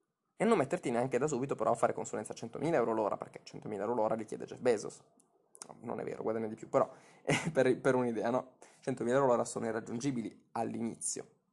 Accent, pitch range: native, 120-145 Hz